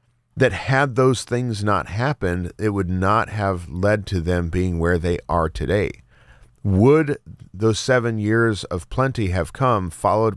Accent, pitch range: American, 90-120 Hz